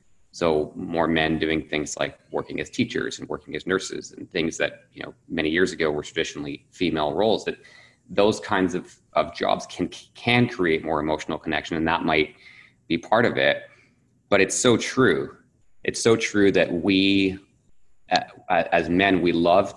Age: 30-49